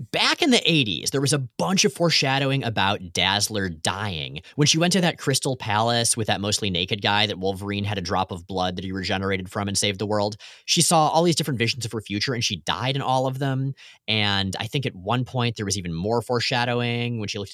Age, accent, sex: 30-49, American, male